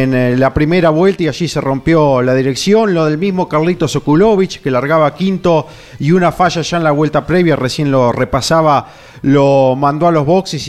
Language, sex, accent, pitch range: Spanish, male, Argentinian, 140-180 Hz